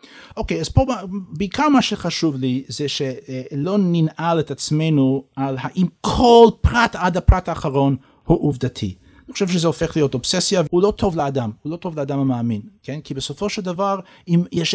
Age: 50-69